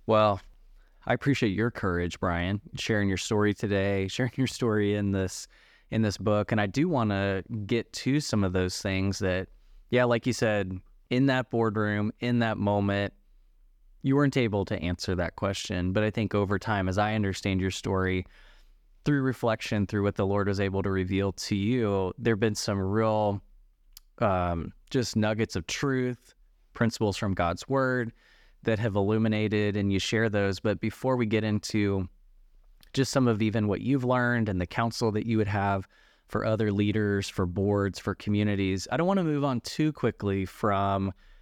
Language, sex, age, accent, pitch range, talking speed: English, male, 20-39, American, 95-115 Hz, 180 wpm